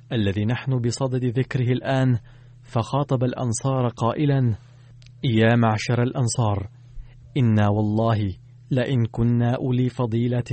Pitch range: 120-130 Hz